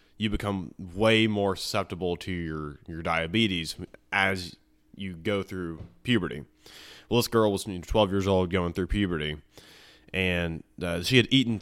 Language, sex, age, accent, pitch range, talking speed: English, male, 20-39, American, 85-105 Hz, 150 wpm